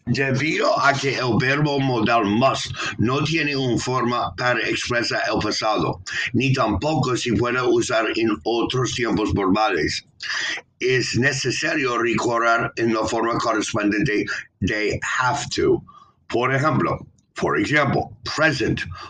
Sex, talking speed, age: male, 125 wpm, 60-79